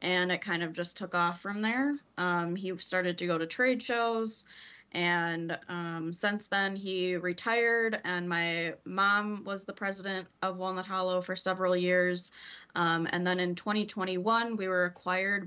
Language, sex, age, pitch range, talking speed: English, female, 20-39, 170-205 Hz, 165 wpm